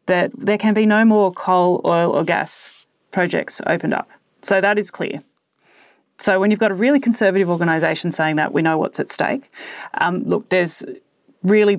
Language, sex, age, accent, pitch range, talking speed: English, female, 30-49, Australian, 155-200 Hz, 185 wpm